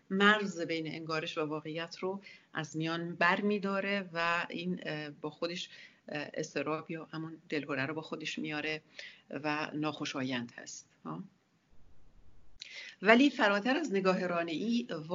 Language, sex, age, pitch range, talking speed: English, female, 50-69, 155-195 Hz, 120 wpm